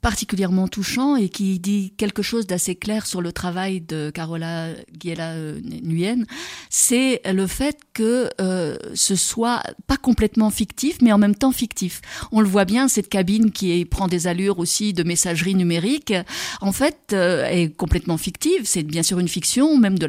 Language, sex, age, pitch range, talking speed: French, female, 50-69, 185-230 Hz, 175 wpm